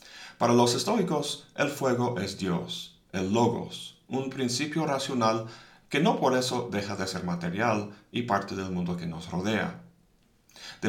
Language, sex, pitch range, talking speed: Spanish, male, 100-145 Hz, 155 wpm